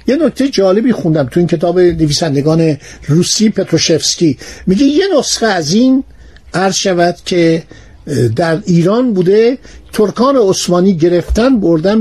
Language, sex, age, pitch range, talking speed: Persian, male, 60-79, 165-215 Hz, 120 wpm